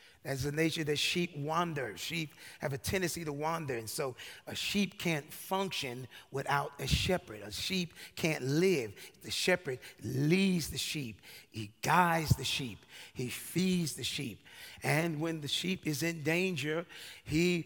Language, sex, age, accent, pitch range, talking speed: English, male, 40-59, American, 140-175 Hz, 160 wpm